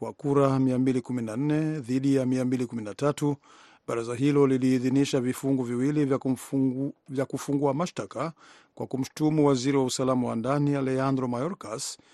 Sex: male